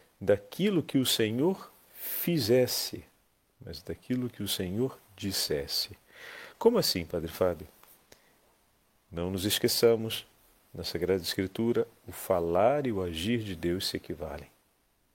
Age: 40-59